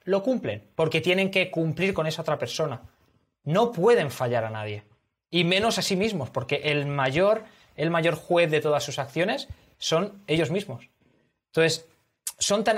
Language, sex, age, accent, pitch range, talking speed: Spanish, male, 20-39, Spanish, 140-180 Hz, 170 wpm